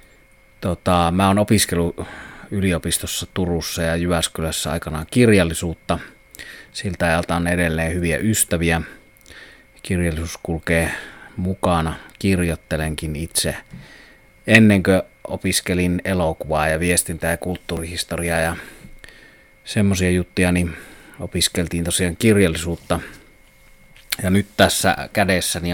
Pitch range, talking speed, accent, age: 85-95 Hz, 95 wpm, native, 30-49